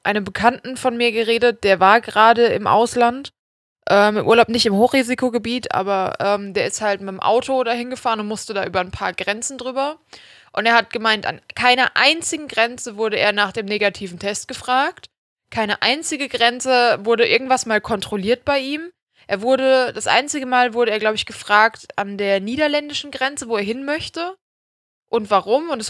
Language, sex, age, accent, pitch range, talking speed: German, female, 20-39, German, 200-245 Hz, 185 wpm